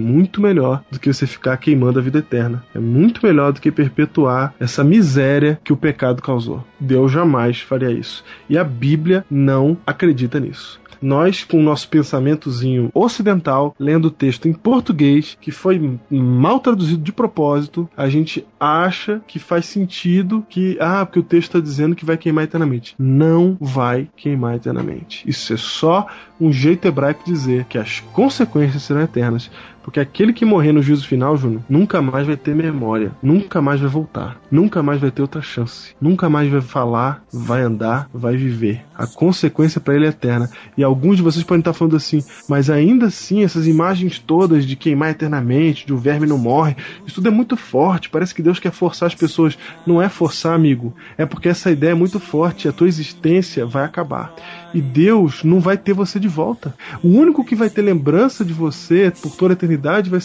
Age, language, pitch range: 20-39, Portuguese, 135-175 Hz